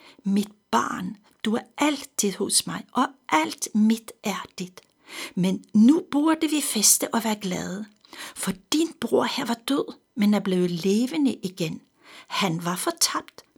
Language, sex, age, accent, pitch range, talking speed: Danish, female, 60-79, native, 190-240 Hz, 150 wpm